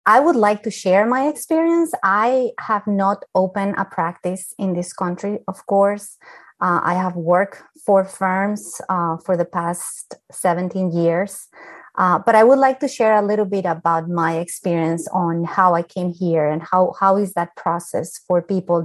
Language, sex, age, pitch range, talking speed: English, female, 30-49, 180-210 Hz, 180 wpm